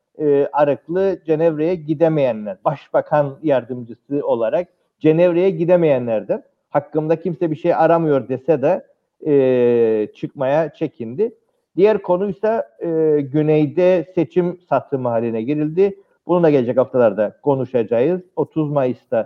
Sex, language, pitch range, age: male, Turkish, 135-175 Hz, 50-69